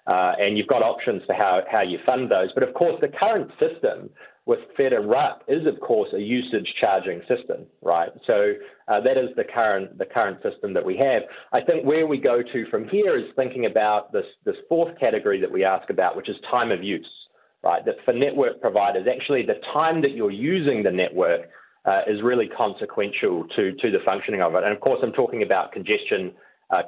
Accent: Australian